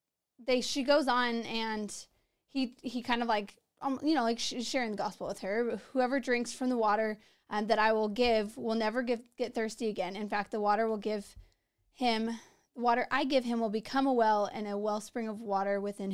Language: English